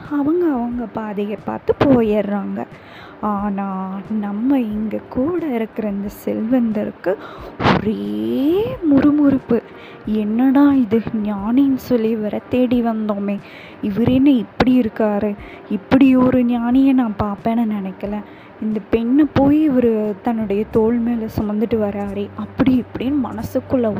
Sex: female